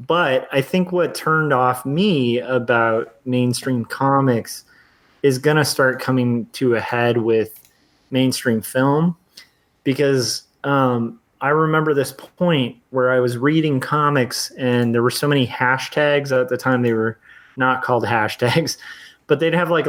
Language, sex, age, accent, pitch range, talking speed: English, male, 30-49, American, 120-145 Hz, 150 wpm